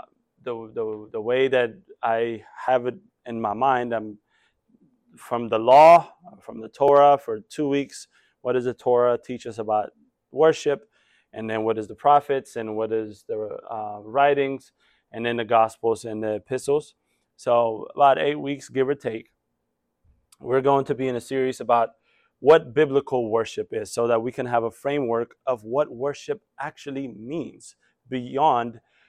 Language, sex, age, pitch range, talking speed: English, male, 20-39, 115-155 Hz, 165 wpm